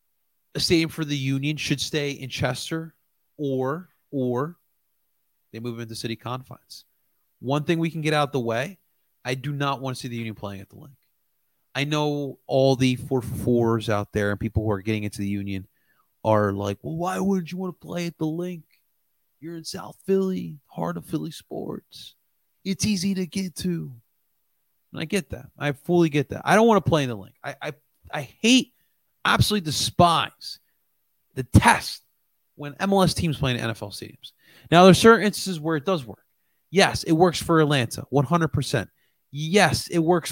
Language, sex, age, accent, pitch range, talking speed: English, male, 30-49, American, 120-165 Hz, 190 wpm